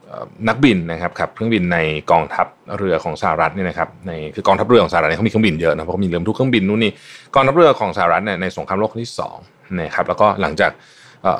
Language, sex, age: Thai, male, 20-39